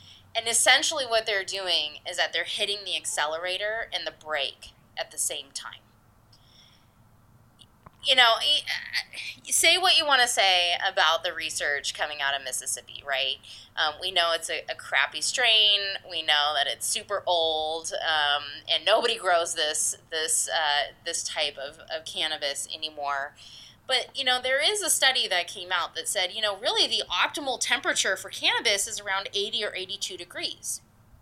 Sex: female